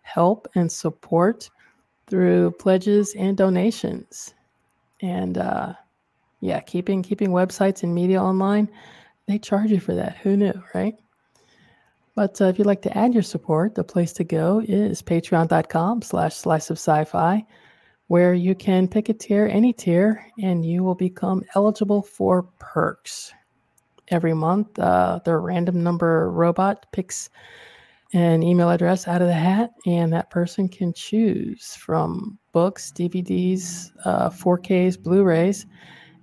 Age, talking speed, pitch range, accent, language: 20-39, 135 wpm, 175-205 Hz, American, English